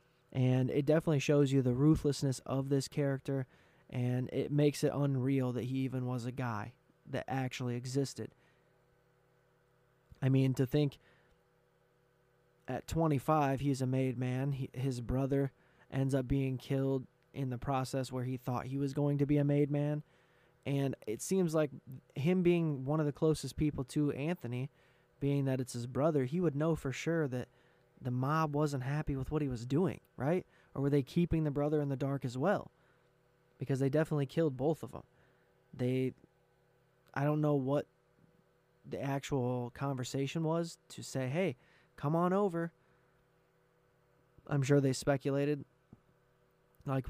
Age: 20-39